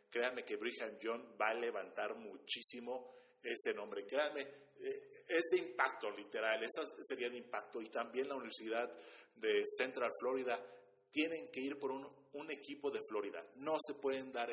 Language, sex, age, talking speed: Spanish, male, 40-59, 165 wpm